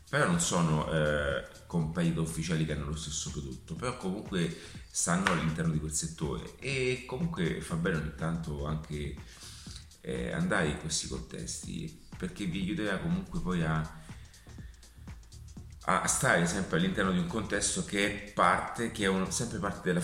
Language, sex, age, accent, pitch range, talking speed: Italian, male, 30-49, native, 80-105 Hz, 155 wpm